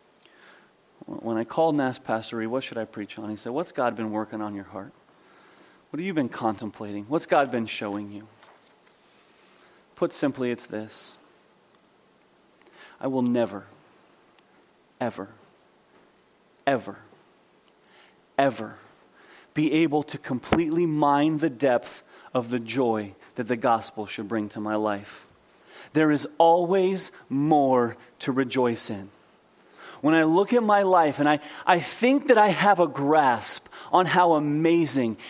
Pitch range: 120-180 Hz